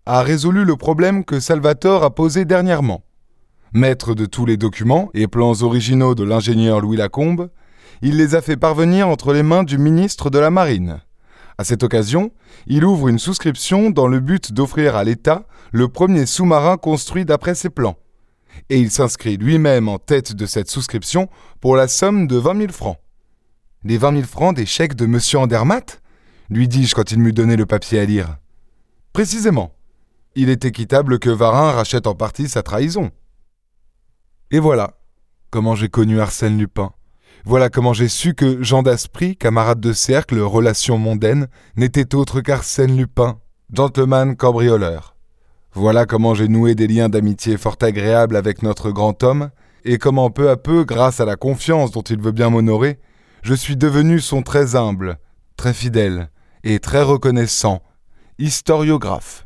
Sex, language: male, French